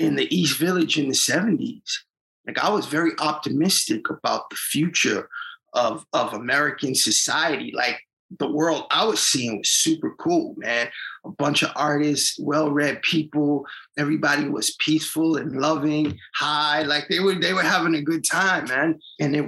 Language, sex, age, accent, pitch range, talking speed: English, male, 30-49, American, 145-170 Hz, 160 wpm